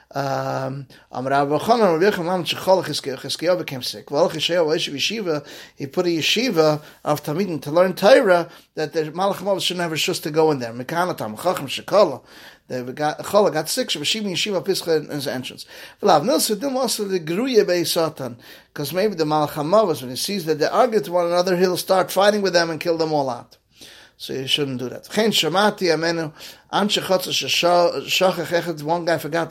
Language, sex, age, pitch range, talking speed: English, male, 30-49, 145-185 Hz, 175 wpm